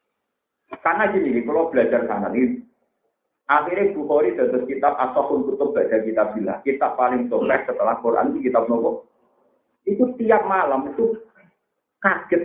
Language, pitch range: Indonesian, 140-230 Hz